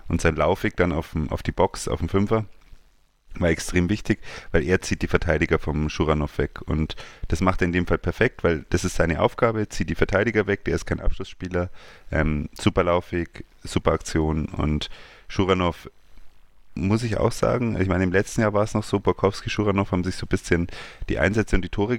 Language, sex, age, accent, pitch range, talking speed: German, male, 30-49, German, 85-100 Hz, 205 wpm